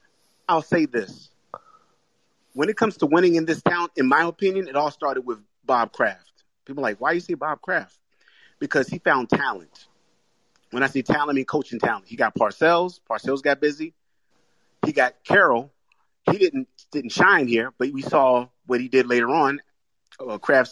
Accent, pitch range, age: American, 135-190 Hz, 30-49